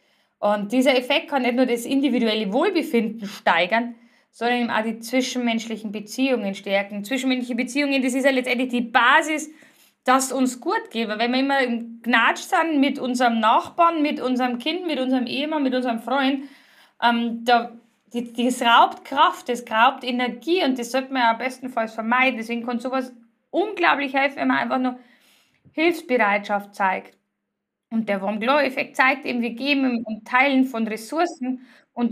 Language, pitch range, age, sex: German, 235-280 Hz, 20-39, female